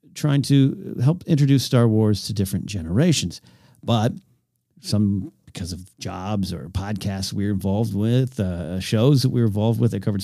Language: English